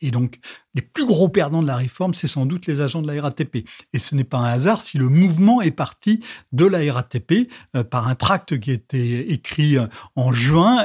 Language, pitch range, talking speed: French, 135-190 Hz, 225 wpm